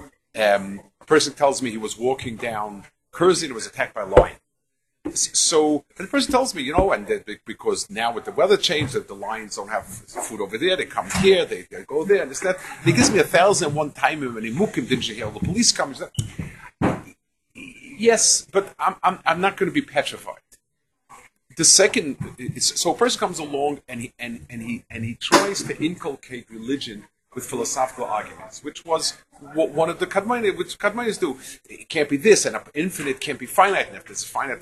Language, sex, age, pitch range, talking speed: English, male, 50-69, 130-210 Hz, 220 wpm